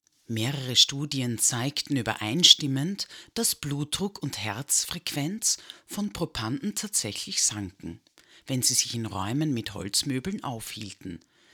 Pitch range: 125-170 Hz